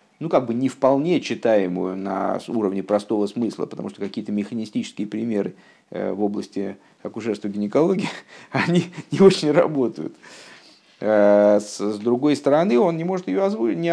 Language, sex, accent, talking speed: Russian, male, native, 135 wpm